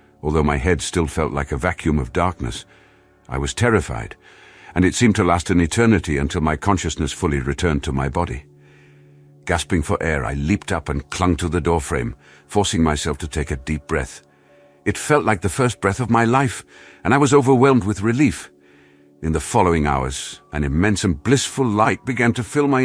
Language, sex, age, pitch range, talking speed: English, male, 60-79, 75-105 Hz, 195 wpm